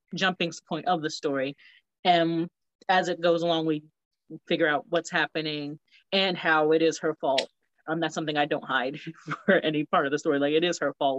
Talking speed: 205 wpm